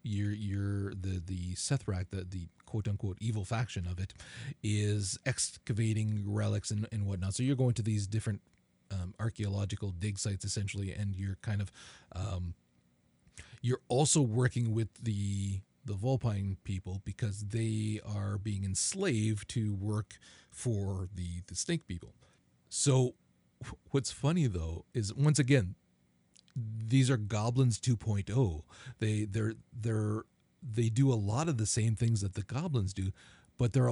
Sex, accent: male, American